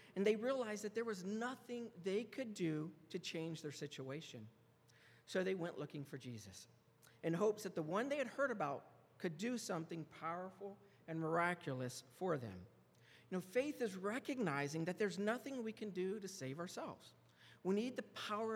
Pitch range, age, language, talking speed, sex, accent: 130-205 Hz, 50-69, English, 180 wpm, male, American